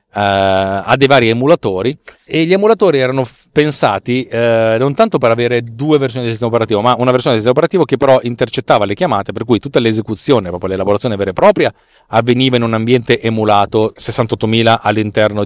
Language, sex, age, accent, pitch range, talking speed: Italian, male, 40-59, native, 100-135 Hz, 185 wpm